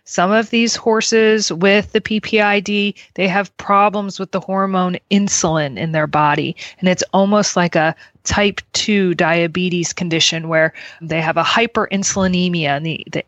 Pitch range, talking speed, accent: 165-195 Hz, 155 wpm, American